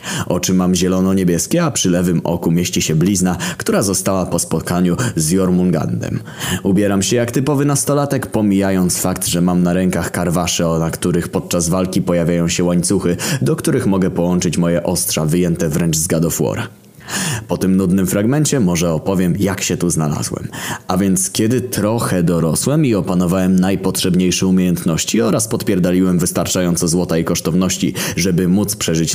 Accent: native